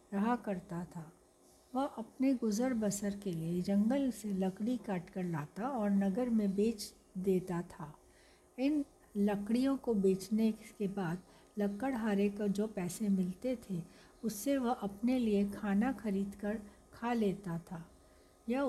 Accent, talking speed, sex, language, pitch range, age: native, 140 wpm, female, Hindi, 195-235 Hz, 60-79